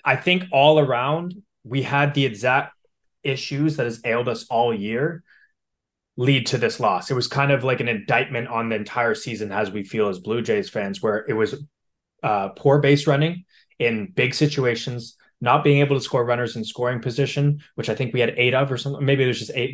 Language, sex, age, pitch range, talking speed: English, male, 20-39, 115-155 Hz, 210 wpm